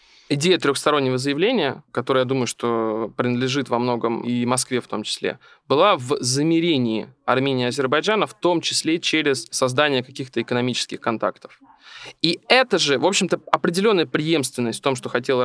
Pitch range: 130-185 Hz